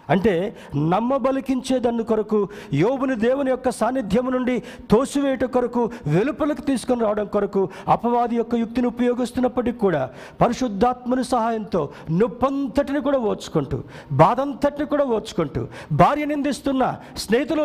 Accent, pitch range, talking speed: native, 160-245 Hz, 100 wpm